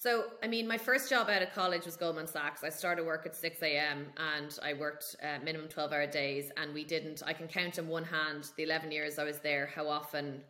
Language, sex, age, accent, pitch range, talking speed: English, female, 20-39, Irish, 155-180 Hz, 245 wpm